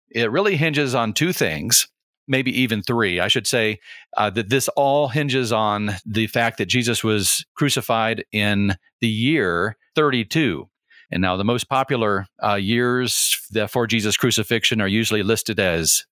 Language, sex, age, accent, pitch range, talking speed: English, male, 40-59, American, 105-140 Hz, 155 wpm